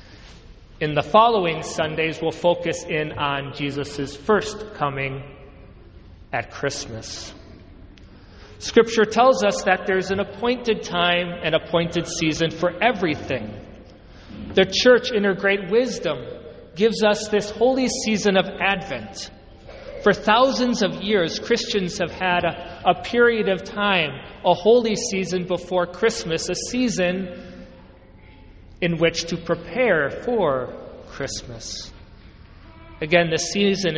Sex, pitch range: male, 140-190 Hz